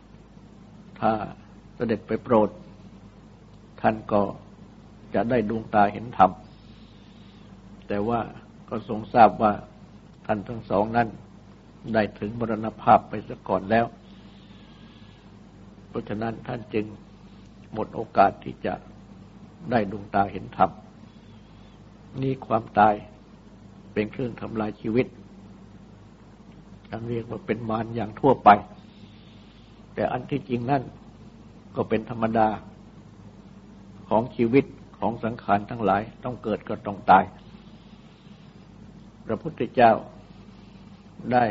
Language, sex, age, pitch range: Thai, male, 60-79, 105-120 Hz